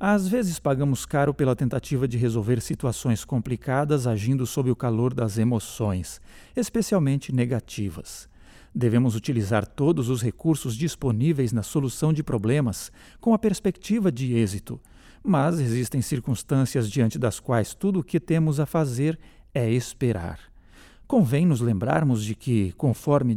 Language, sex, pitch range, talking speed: Portuguese, male, 115-160 Hz, 135 wpm